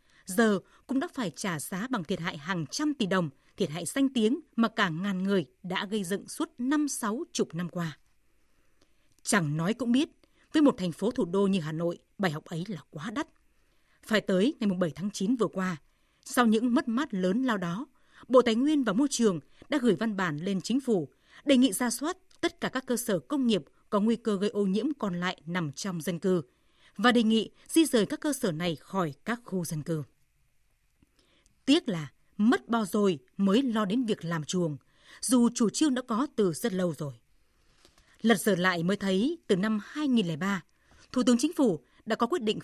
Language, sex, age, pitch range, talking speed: Vietnamese, female, 20-39, 185-250 Hz, 210 wpm